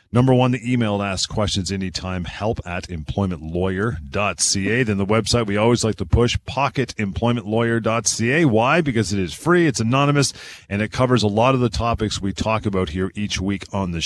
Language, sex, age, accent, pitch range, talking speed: English, male, 40-59, American, 95-125 Hz, 180 wpm